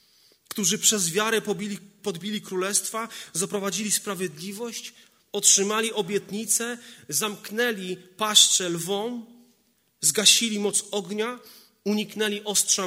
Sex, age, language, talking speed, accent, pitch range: male, 30-49, Polish, 85 wpm, native, 175-210 Hz